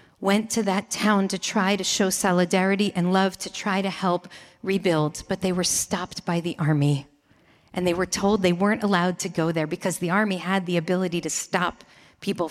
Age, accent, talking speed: 40-59, American, 200 wpm